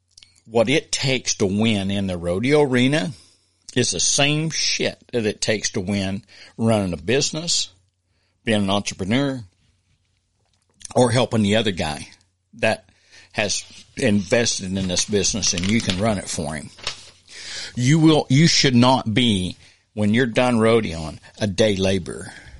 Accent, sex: American, male